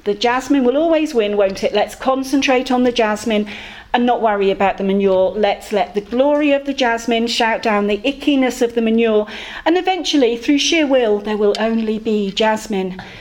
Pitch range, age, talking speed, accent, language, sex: 210-275 Hz, 40-59, 190 wpm, British, English, female